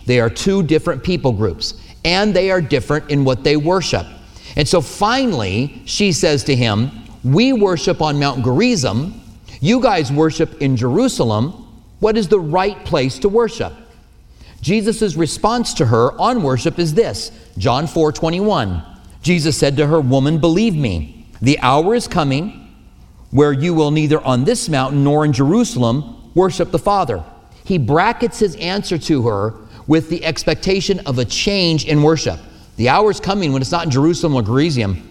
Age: 40-59